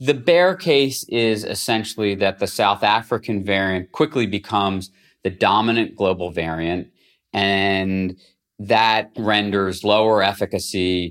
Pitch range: 90-110 Hz